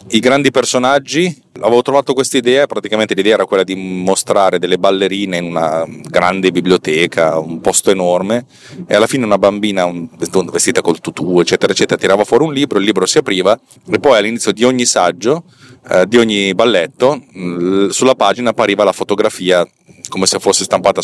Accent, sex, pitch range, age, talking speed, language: native, male, 90-115 Hz, 30-49, 170 wpm, Italian